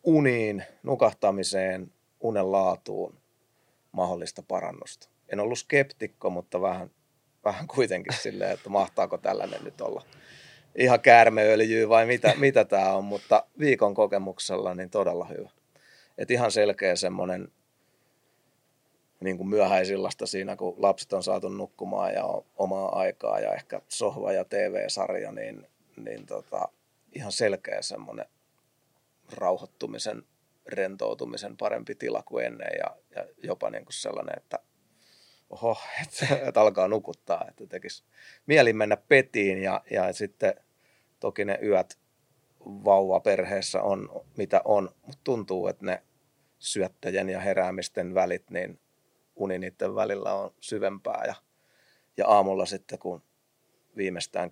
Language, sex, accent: Finnish, male, native